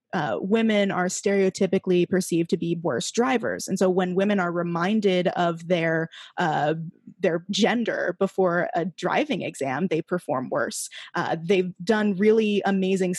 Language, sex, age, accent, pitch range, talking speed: English, female, 20-39, American, 180-210 Hz, 145 wpm